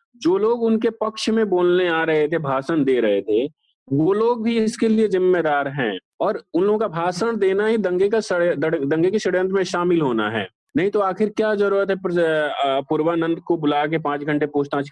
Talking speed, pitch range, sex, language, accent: 195 wpm, 150-195 Hz, male, English, Indian